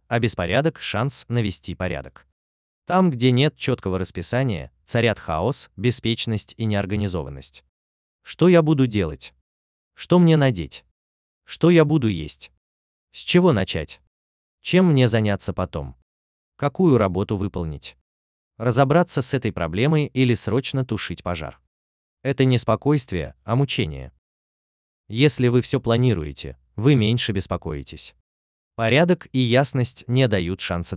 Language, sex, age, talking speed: Russian, male, 30-49, 120 wpm